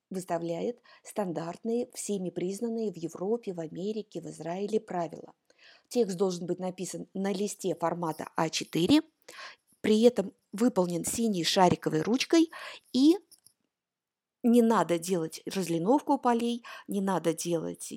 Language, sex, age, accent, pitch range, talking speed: Russian, female, 50-69, native, 190-270 Hz, 115 wpm